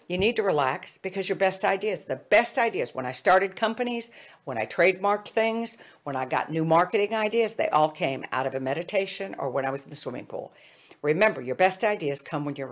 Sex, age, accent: female, 60-79, American